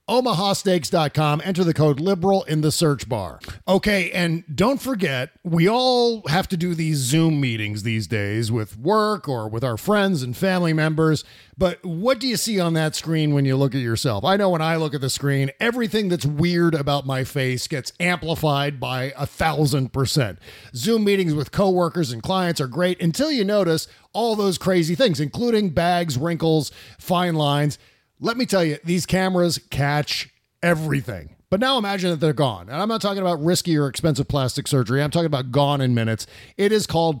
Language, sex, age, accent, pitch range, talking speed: English, male, 40-59, American, 140-185 Hz, 190 wpm